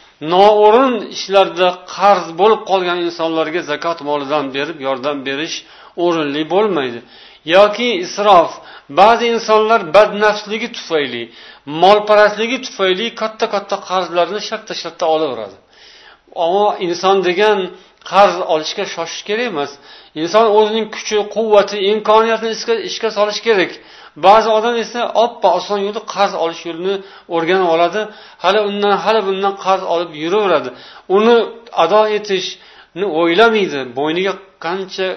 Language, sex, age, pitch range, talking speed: Russian, male, 50-69, 170-220 Hz, 115 wpm